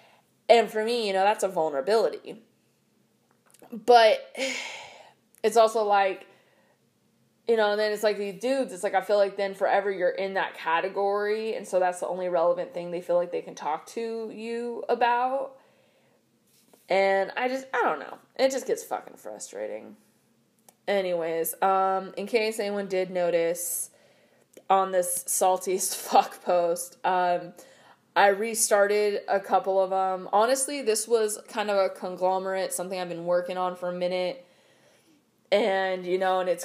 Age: 20-39